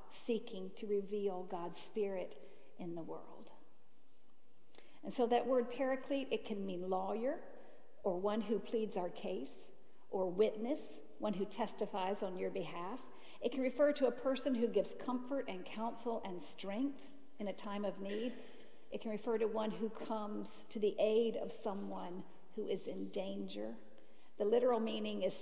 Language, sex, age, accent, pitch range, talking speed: English, female, 50-69, American, 200-250 Hz, 165 wpm